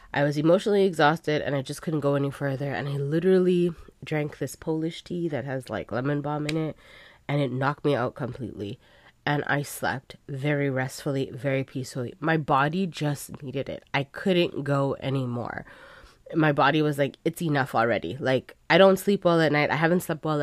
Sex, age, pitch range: female, 20-39, 135-165 Hz